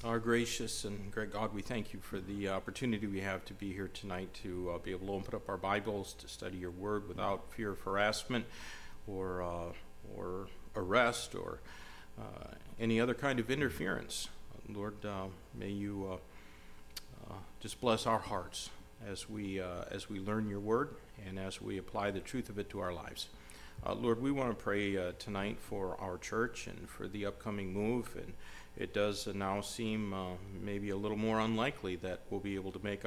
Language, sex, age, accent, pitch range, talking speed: English, male, 50-69, American, 95-105 Hz, 195 wpm